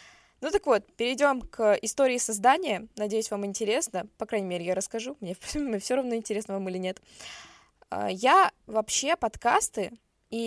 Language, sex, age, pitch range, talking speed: Russian, female, 20-39, 210-250 Hz, 150 wpm